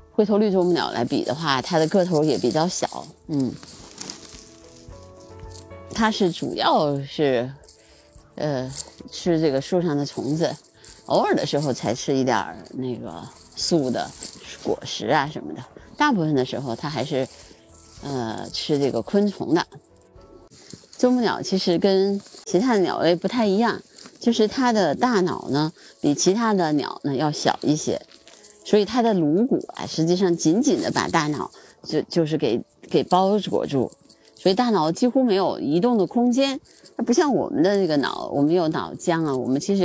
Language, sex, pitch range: Chinese, female, 135-205 Hz